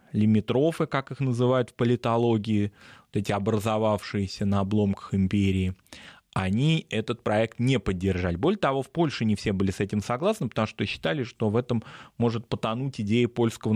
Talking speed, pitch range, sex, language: 160 wpm, 110-150 Hz, male, Russian